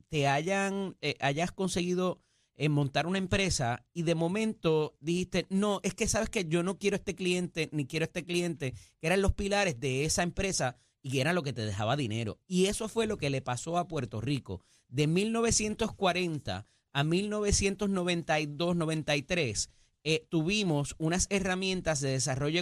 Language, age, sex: Spanish, 30-49, male